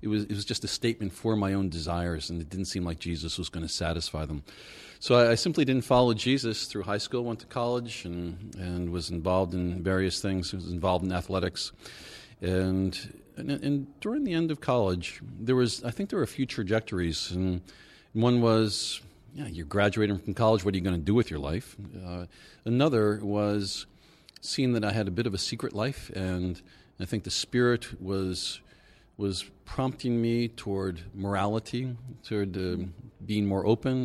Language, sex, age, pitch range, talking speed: English, male, 40-59, 90-120 Hz, 200 wpm